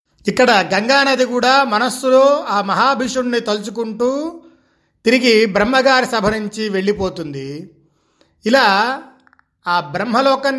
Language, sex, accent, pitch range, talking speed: Telugu, male, native, 185-255 Hz, 85 wpm